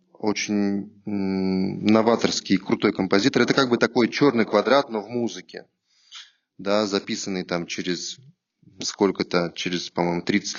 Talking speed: 120 wpm